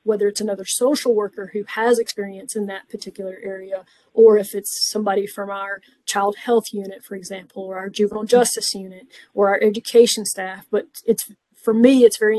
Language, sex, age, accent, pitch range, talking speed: English, female, 30-49, American, 205-235 Hz, 185 wpm